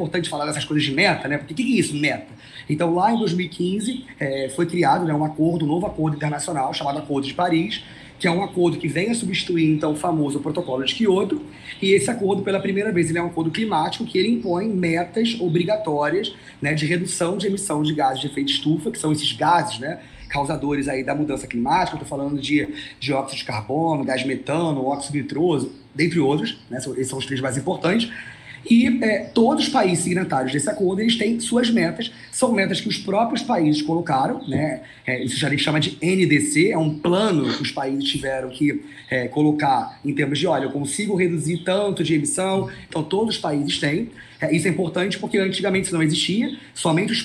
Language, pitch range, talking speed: Portuguese, 145-195 Hz, 210 wpm